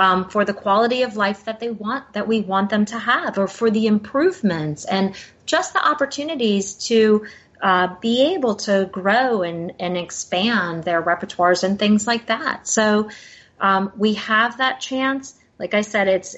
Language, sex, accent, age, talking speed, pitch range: English, female, American, 30-49, 175 wpm, 180-225 Hz